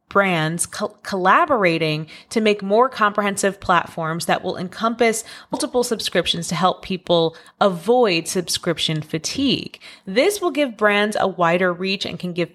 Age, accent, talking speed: 30-49, American, 135 wpm